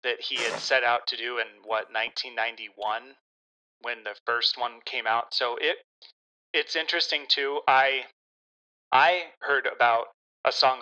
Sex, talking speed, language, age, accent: male, 150 wpm, English, 30-49, American